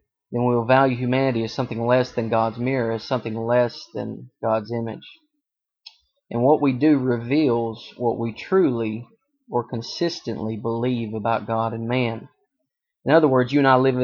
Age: 30-49